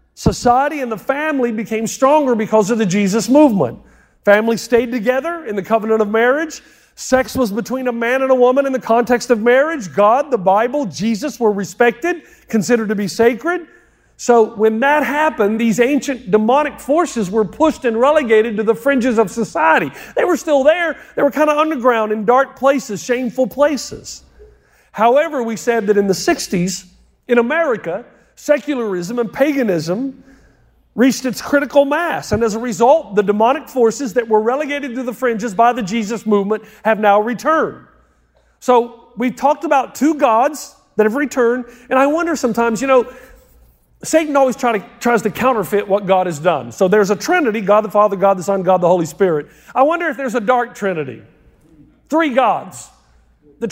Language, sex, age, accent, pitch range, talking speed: English, male, 50-69, American, 215-275 Hz, 175 wpm